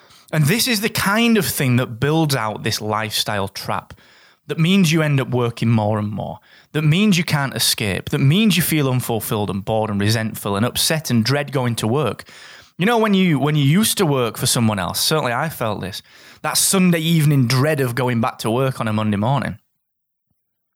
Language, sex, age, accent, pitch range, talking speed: English, male, 20-39, British, 105-165 Hz, 210 wpm